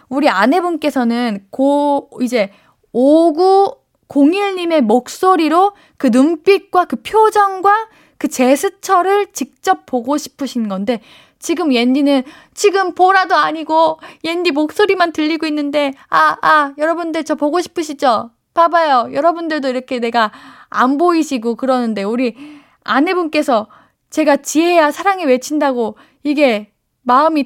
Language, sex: Korean, female